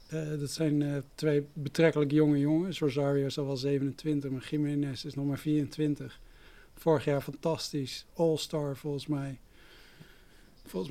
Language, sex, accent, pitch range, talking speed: Dutch, male, Dutch, 145-160 Hz, 145 wpm